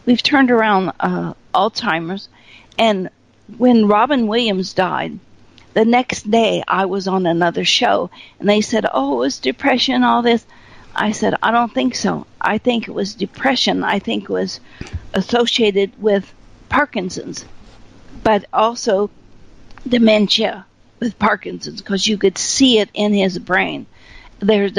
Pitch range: 195-235 Hz